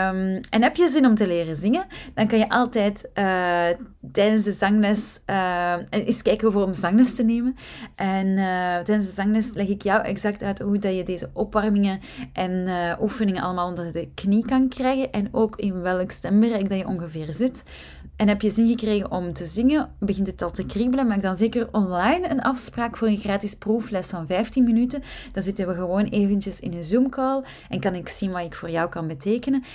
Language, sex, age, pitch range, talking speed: Dutch, female, 20-39, 180-230 Hz, 200 wpm